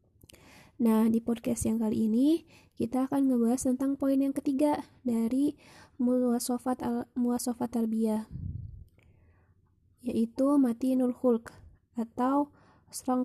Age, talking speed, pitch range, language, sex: 20-39, 110 wpm, 220-255 Hz, Indonesian, female